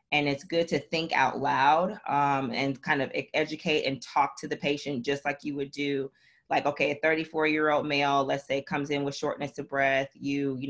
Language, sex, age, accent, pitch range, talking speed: English, female, 20-39, American, 135-155 Hz, 210 wpm